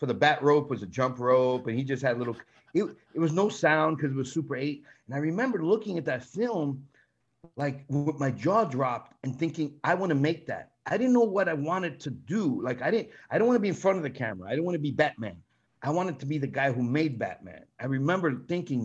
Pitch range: 140-190 Hz